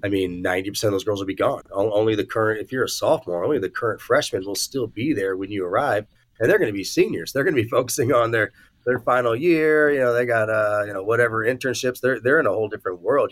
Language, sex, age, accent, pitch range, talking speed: English, male, 30-49, American, 95-120 Hz, 265 wpm